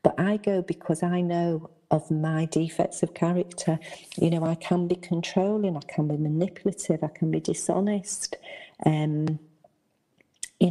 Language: English